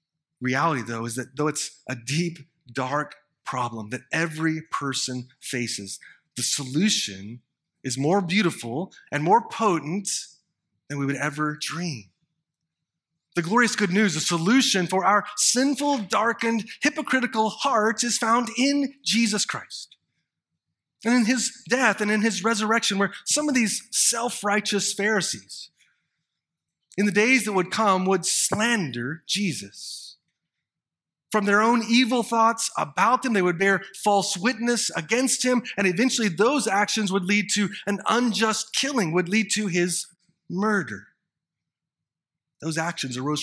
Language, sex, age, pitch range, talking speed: English, male, 30-49, 160-225 Hz, 135 wpm